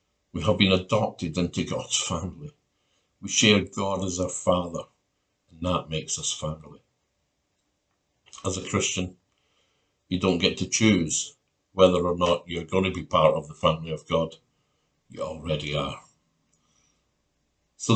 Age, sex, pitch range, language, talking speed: 60-79, male, 85-110 Hz, English, 140 wpm